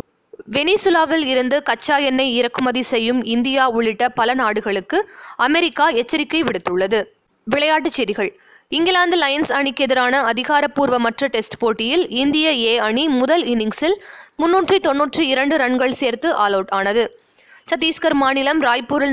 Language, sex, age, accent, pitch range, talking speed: Tamil, female, 20-39, native, 240-320 Hz, 115 wpm